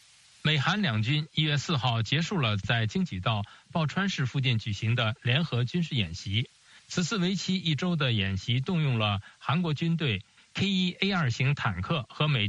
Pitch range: 115-170 Hz